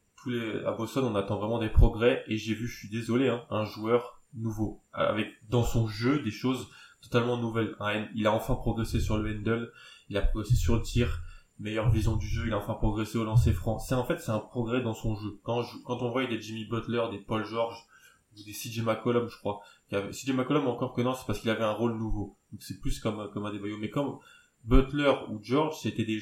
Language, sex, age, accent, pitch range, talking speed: French, male, 20-39, French, 105-120 Hz, 235 wpm